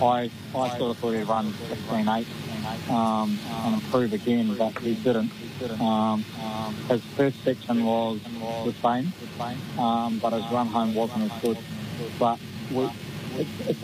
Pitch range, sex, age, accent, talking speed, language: 115-130 Hz, male, 20-39, Australian, 145 wpm, English